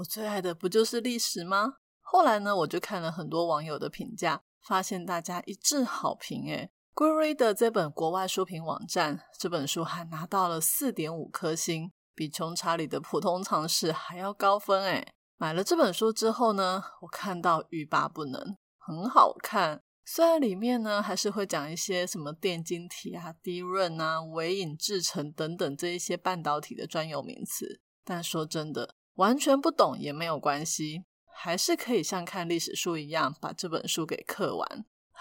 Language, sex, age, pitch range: Chinese, female, 20-39, 165-215 Hz